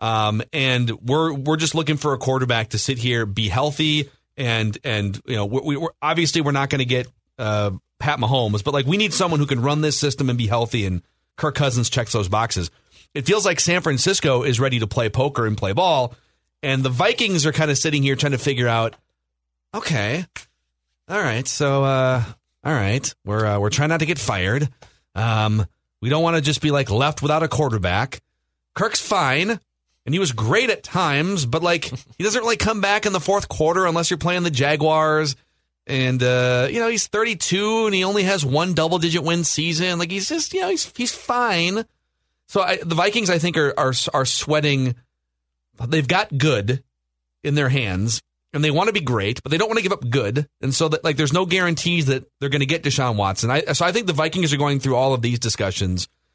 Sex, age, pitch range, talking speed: male, 30-49, 115-160 Hz, 215 wpm